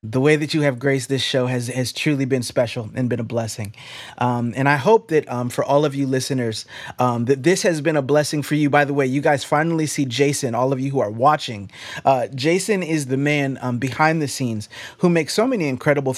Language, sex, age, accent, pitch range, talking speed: English, male, 30-49, American, 130-160 Hz, 240 wpm